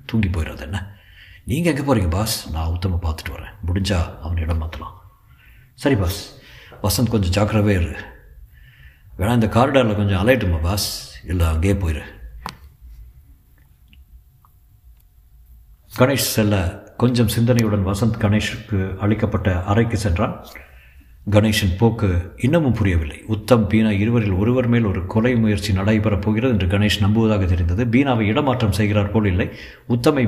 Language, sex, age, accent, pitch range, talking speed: Tamil, male, 60-79, native, 90-110 Hz, 125 wpm